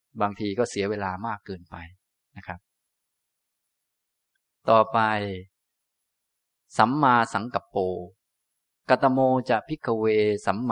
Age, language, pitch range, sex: 20-39, Thai, 100-130 Hz, male